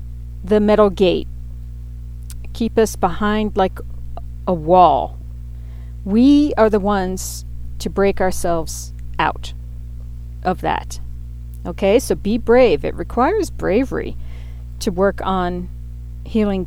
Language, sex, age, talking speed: English, female, 40-59, 110 wpm